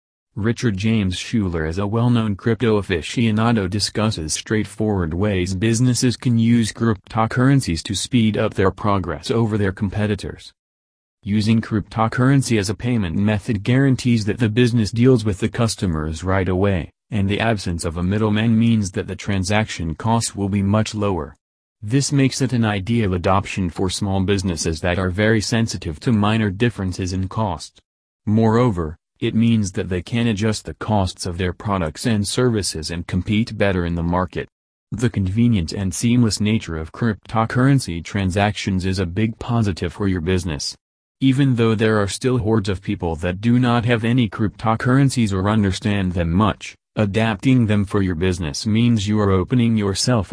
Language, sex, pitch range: English, male, 95-115 Hz